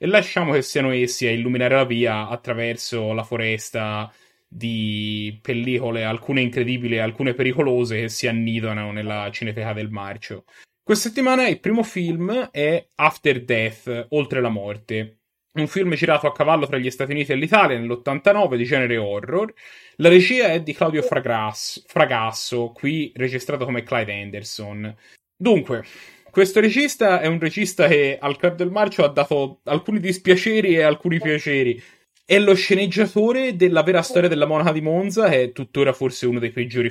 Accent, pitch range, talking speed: native, 120-170 Hz, 160 wpm